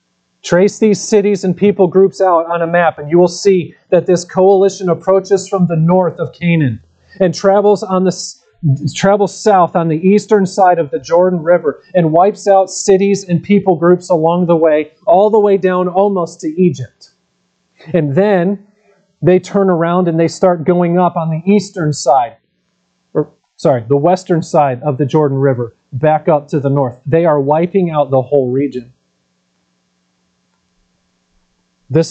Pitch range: 125-175 Hz